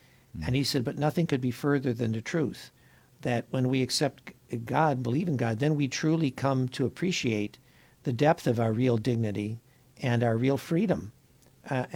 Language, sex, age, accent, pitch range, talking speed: English, male, 60-79, American, 120-145 Hz, 180 wpm